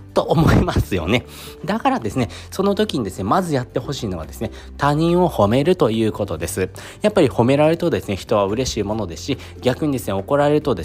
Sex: male